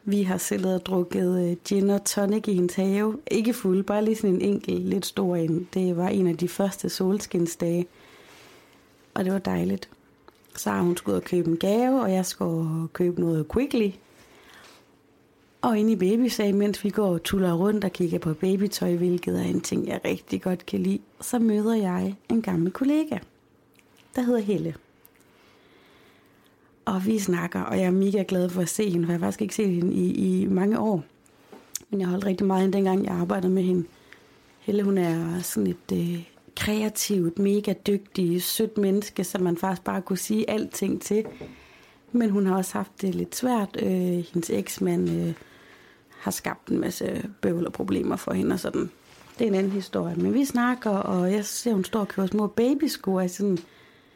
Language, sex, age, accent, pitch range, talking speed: Danish, female, 30-49, native, 180-210 Hz, 195 wpm